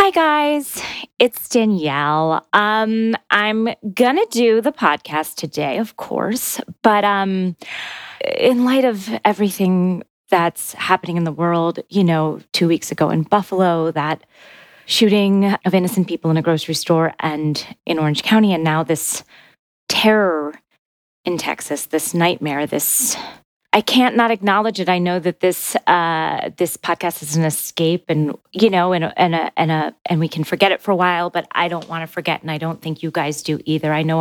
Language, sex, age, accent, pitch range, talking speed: English, female, 30-49, American, 160-210 Hz, 180 wpm